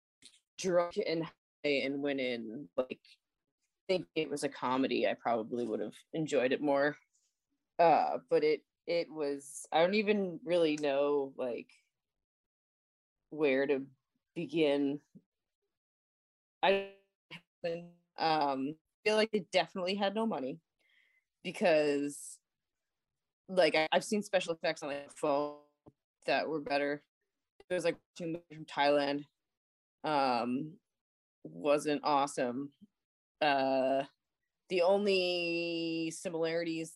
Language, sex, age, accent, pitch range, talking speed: English, female, 20-39, American, 140-180 Hz, 110 wpm